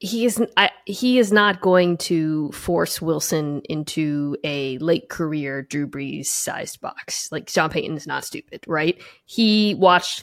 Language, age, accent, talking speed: English, 20-39, American, 135 wpm